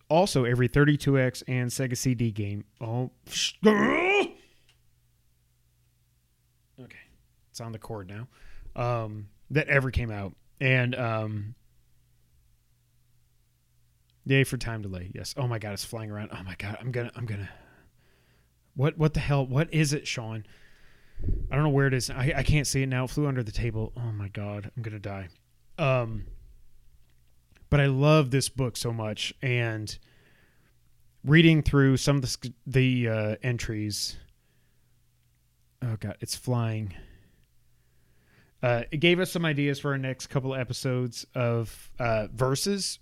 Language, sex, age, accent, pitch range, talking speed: English, male, 30-49, American, 110-135 Hz, 145 wpm